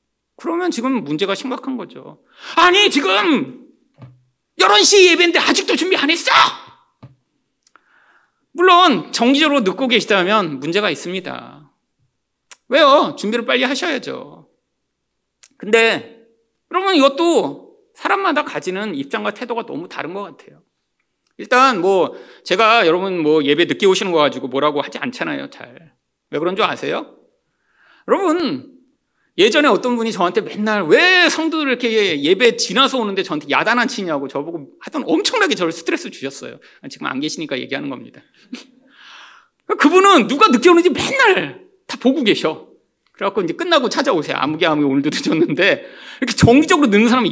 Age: 40-59